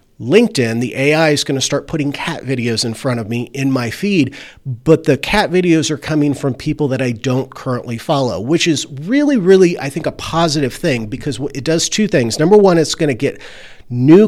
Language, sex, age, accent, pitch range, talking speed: English, male, 40-59, American, 125-165 Hz, 215 wpm